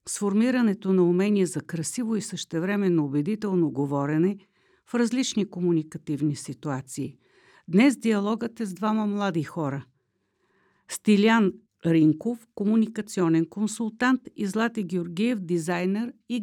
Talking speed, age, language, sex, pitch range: 105 wpm, 50-69, Bulgarian, female, 175-220 Hz